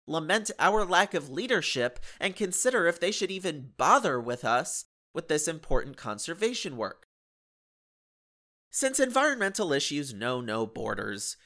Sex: male